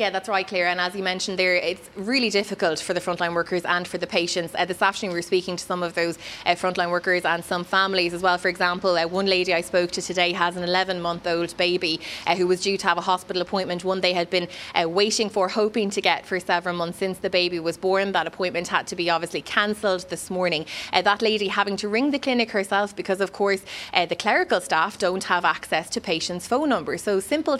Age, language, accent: 20-39, English, Irish